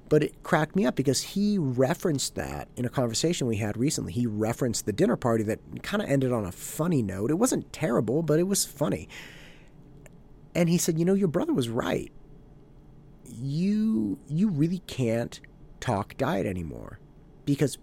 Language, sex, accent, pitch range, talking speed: English, male, American, 115-150 Hz, 175 wpm